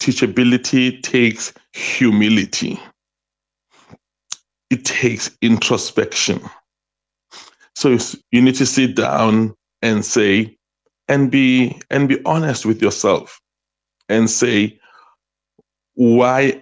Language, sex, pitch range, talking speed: English, male, 110-130 Hz, 85 wpm